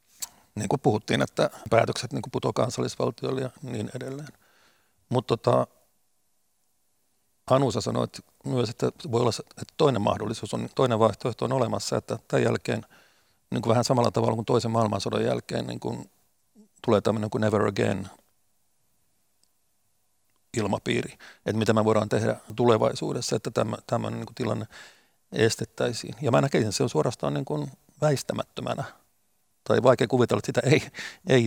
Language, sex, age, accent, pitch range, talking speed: Finnish, male, 50-69, native, 105-120 Hz, 140 wpm